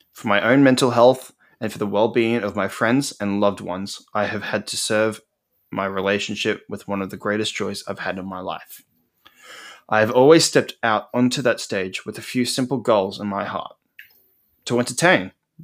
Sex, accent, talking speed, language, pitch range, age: male, Australian, 195 wpm, English, 105-125 Hz, 20-39